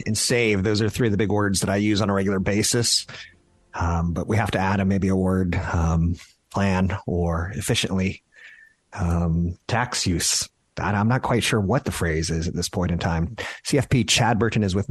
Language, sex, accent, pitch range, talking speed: English, male, American, 85-100 Hz, 205 wpm